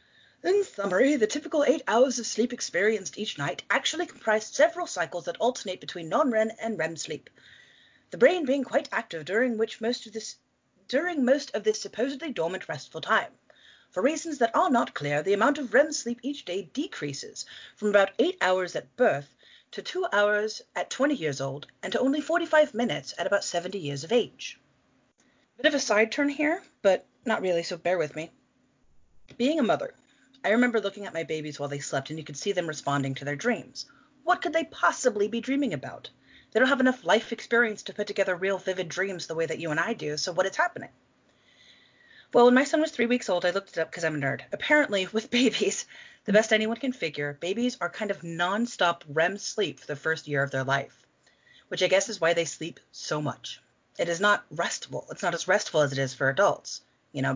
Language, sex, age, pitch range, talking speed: English, female, 30-49, 170-260 Hz, 210 wpm